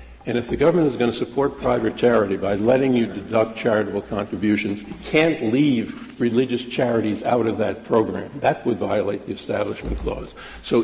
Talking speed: 175 wpm